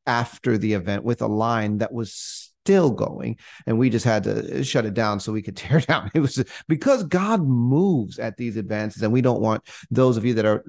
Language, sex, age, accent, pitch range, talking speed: English, male, 30-49, American, 105-125 Hz, 225 wpm